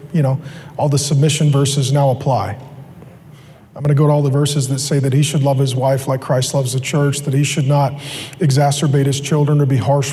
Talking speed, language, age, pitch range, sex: 230 wpm, English, 40-59, 140-160 Hz, male